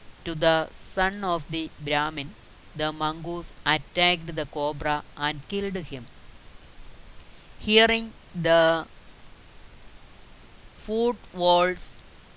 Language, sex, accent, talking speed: Malayalam, female, native, 80 wpm